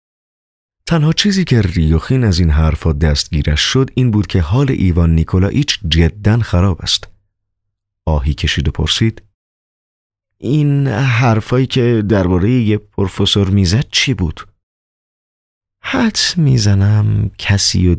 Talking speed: 115 wpm